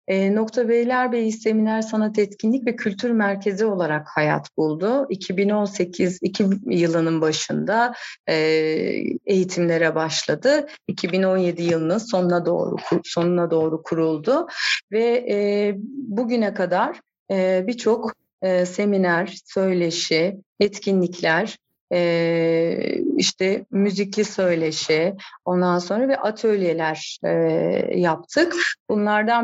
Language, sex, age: Turkish, female, 30-49